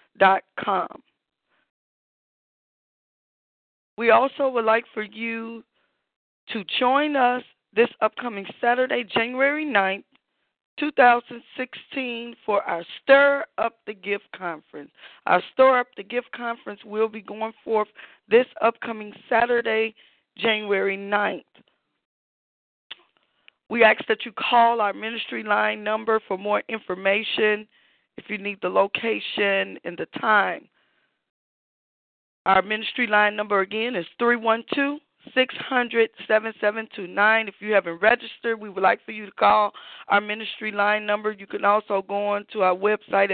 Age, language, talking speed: 20-39, English, 125 wpm